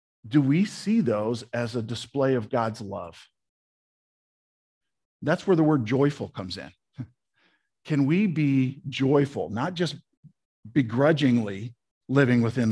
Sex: male